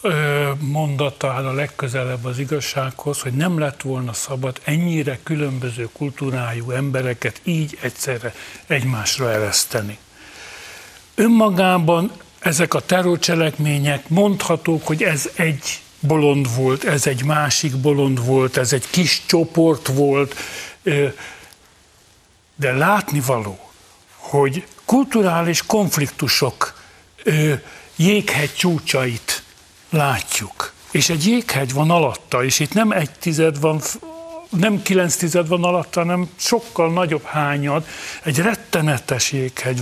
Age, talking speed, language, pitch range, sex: 60-79, 105 wpm, Hungarian, 135-175 Hz, male